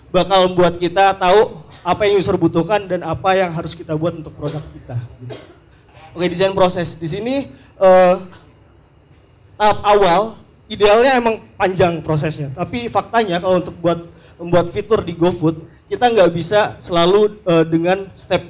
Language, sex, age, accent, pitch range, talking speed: Indonesian, male, 20-39, native, 165-205 Hz, 150 wpm